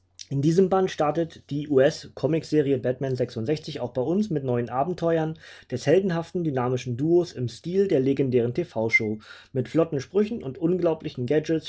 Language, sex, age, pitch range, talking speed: German, male, 20-39, 130-165 Hz, 160 wpm